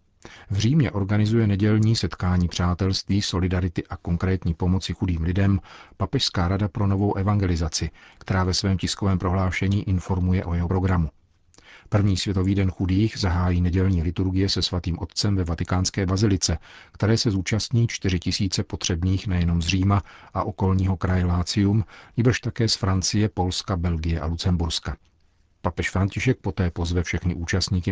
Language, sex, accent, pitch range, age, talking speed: Czech, male, native, 90-100 Hz, 40-59, 140 wpm